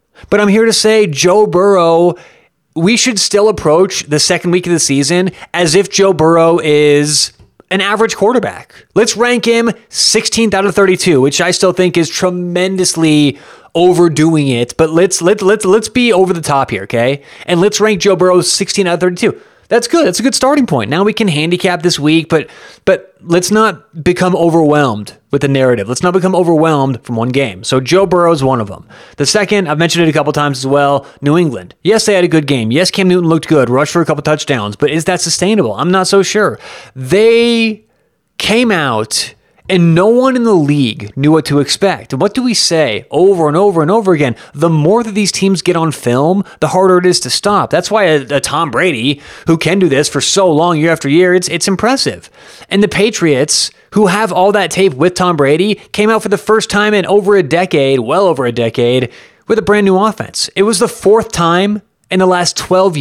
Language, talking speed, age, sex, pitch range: English, 215 wpm, 30-49, male, 150-200 Hz